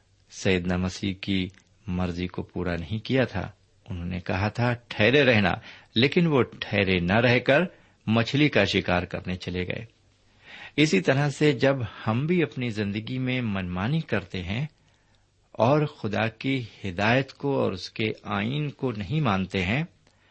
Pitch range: 95-125 Hz